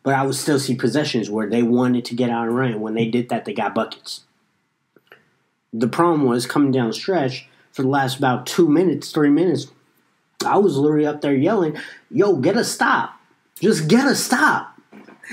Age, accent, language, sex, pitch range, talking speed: 30-49, American, English, male, 125-160 Hz, 200 wpm